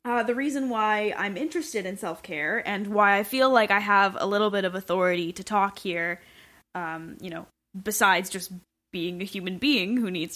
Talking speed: 195 wpm